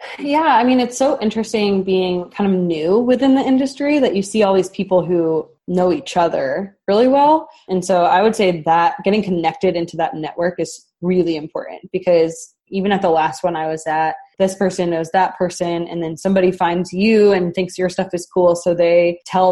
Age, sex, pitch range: 20-39, female, 170-205 Hz